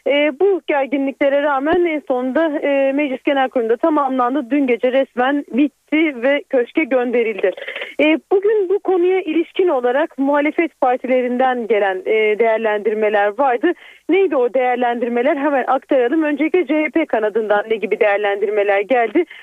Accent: native